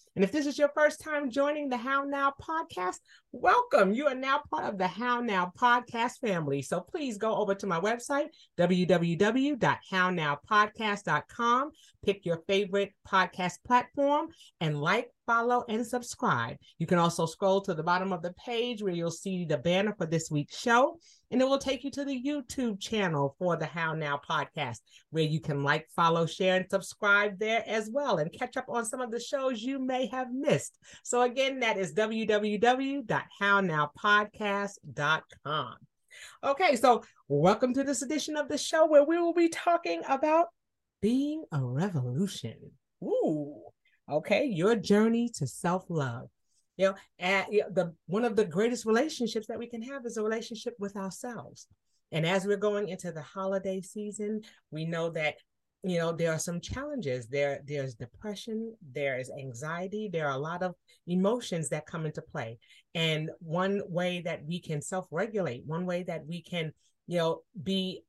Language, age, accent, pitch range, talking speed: English, 40-59, American, 170-245 Hz, 170 wpm